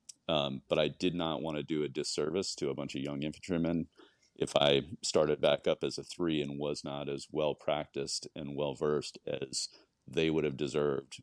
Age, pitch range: 40-59, 70-80 Hz